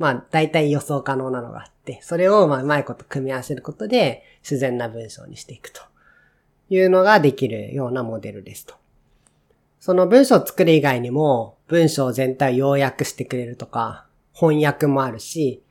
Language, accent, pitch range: Japanese, native, 125-170 Hz